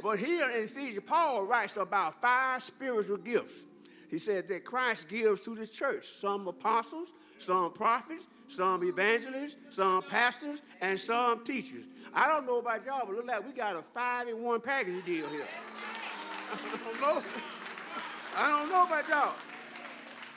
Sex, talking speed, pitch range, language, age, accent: male, 160 wpm, 210-300 Hz, English, 50-69, American